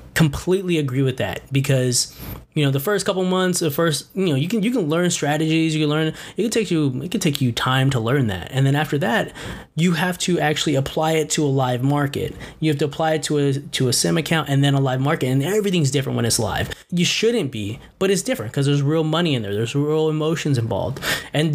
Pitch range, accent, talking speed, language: 130-160 Hz, American, 250 wpm, English